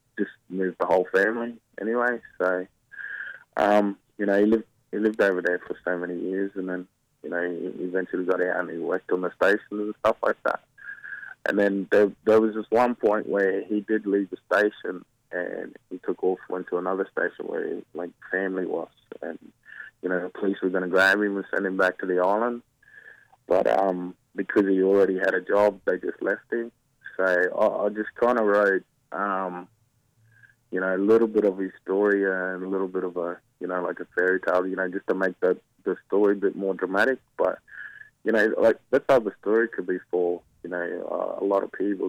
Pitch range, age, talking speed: 95-110 Hz, 20-39, 220 wpm